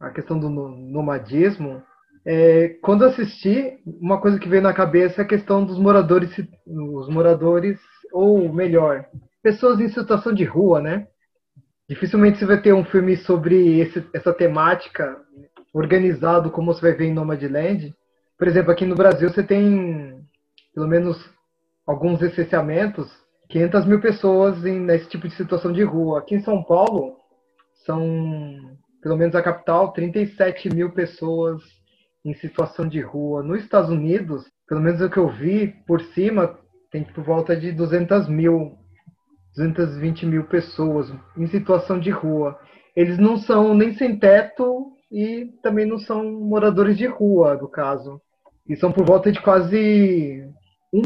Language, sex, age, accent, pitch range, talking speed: Portuguese, male, 20-39, Brazilian, 160-195 Hz, 150 wpm